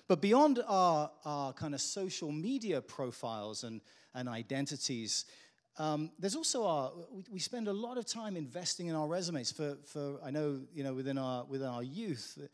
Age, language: 40-59, English